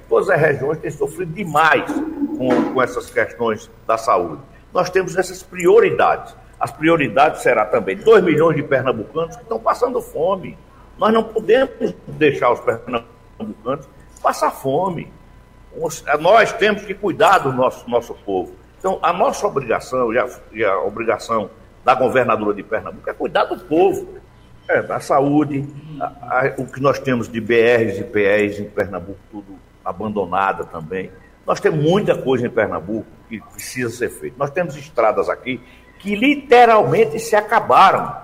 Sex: male